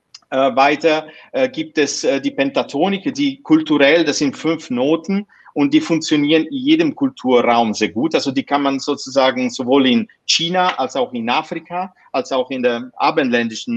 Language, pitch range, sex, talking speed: German, 140-190 Hz, male, 170 wpm